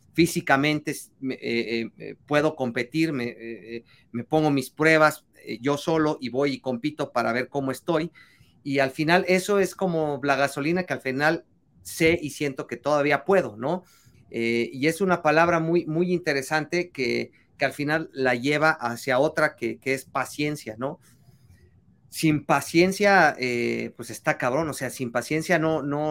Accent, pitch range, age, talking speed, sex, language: Mexican, 130-165 Hz, 40-59, 165 wpm, male, Spanish